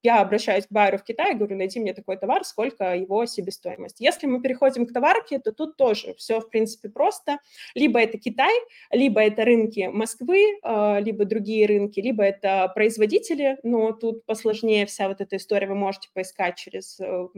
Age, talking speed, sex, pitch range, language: 20-39, 175 wpm, female, 195-230 Hz, Russian